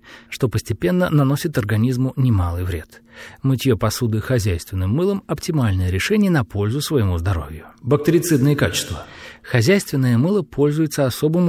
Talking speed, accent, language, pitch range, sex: 115 wpm, native, Russian, 105-150 Hz, male